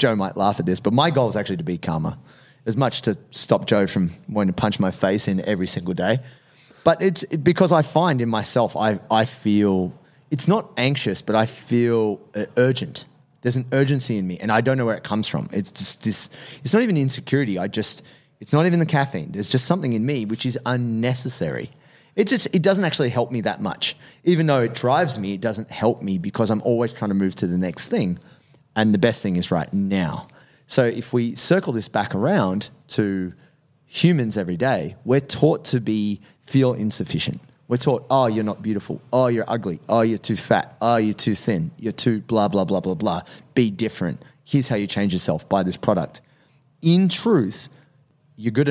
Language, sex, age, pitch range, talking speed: English, male, 30-49, 105-145 Hz, 210 wpm